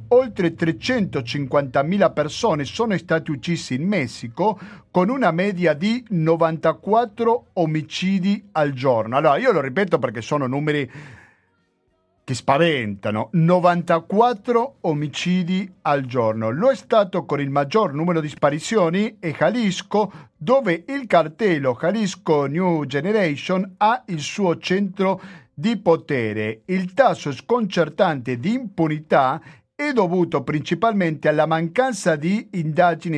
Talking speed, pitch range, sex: 115 wpm, 150-200 Hz, male